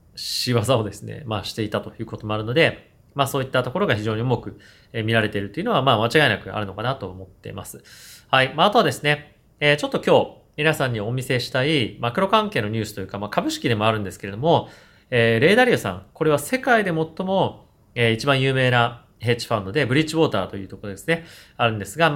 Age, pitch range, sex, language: 30-49, 105-150 Hz, male, Japanese